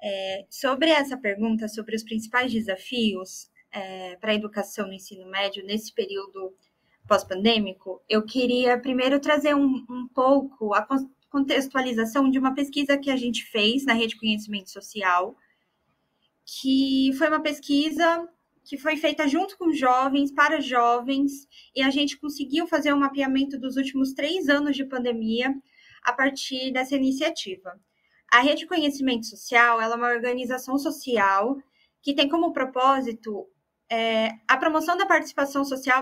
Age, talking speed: 20-39, 145 wpm